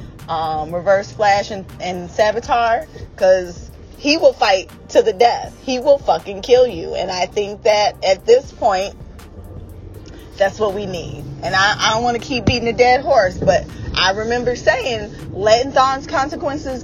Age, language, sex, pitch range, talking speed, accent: 20-39, English, female, 175-250 Hz, 170 wpm, American